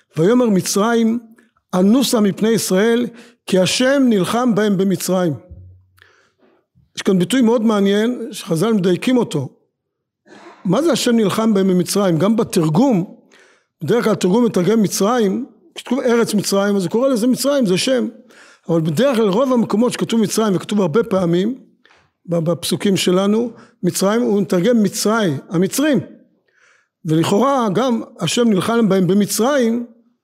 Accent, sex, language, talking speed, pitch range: native, male, Hebrew, 115 wpm, 185-240 Hz